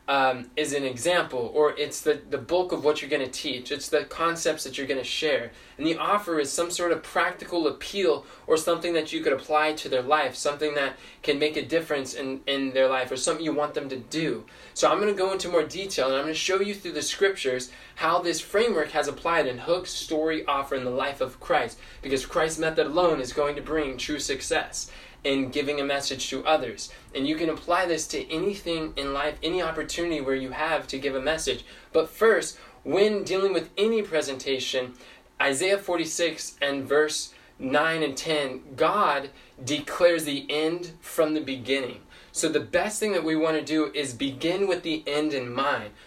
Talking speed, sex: 205 wpm, male